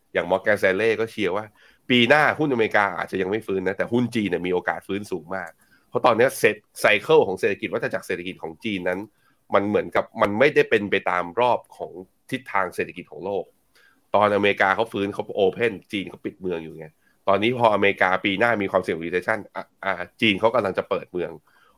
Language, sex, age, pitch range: Thai, male, 20-39, 95-125 Hz